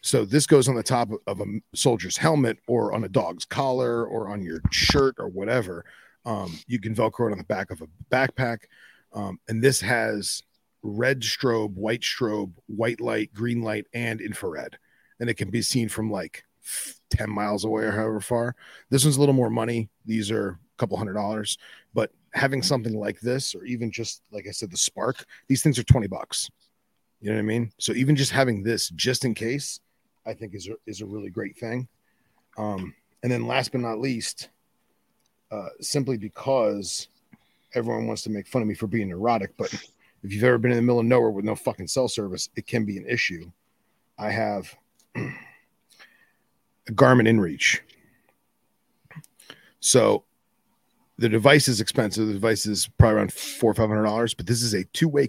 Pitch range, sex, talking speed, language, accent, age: 105-125 Hz, male, 190 wpm, English, American, 30-49